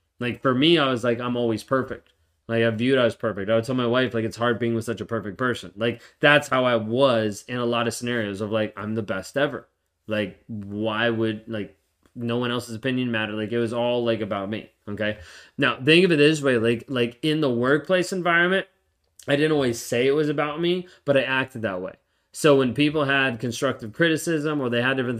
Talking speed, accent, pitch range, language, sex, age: 230 wpm, American, 110-135 Hz, English, male, 20-39